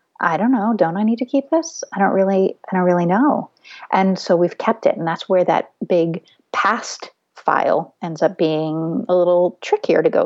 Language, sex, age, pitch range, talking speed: English, female, 30-49, 175-255 Hz, 210 wpm